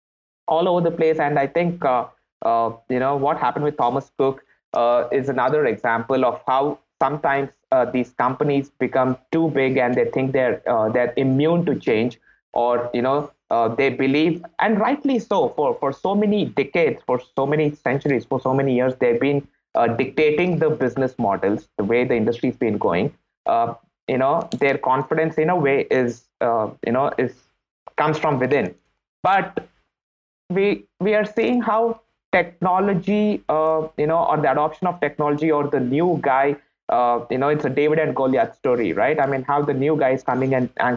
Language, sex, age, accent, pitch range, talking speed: English, male, 20-39, Indian, 125-155 Hz, 185 wpm